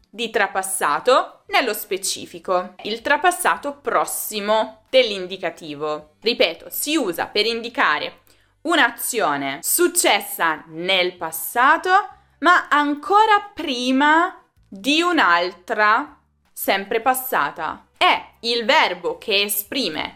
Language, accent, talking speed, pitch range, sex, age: Italian, native, 85 wpm, 180-280 Hz, female, 20-39